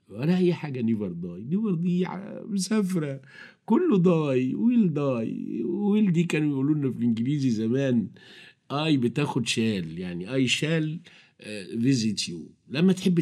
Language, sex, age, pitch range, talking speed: Arabic, male, 50-69, 130-180 Hz, 135 wpm